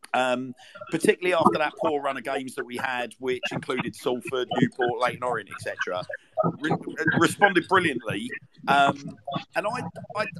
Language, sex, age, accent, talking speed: English, male, 50-69, British, 145 wpm